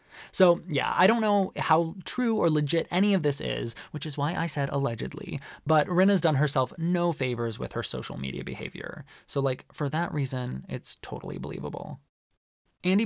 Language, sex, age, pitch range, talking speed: English, male, 20-39, 140-195 Hz, 180 wpm